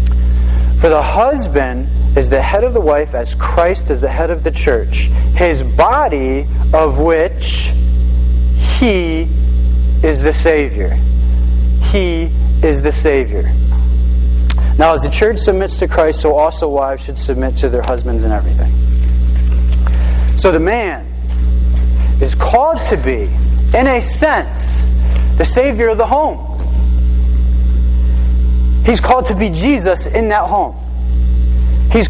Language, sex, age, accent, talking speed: English, male, 40-59, American, 130 wpm